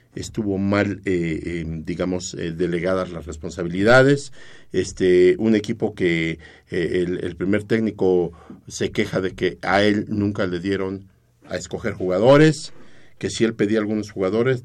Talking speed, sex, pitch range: 150 wpm, male, 95-125 Hz